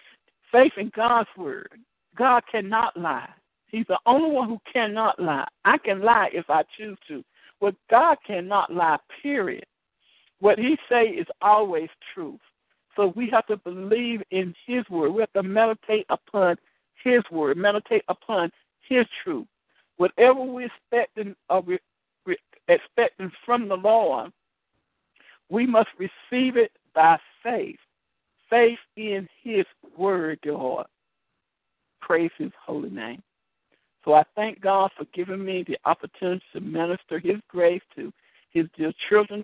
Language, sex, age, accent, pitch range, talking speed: English, male, 60-79, American, 180-230 Hz, 135 wpm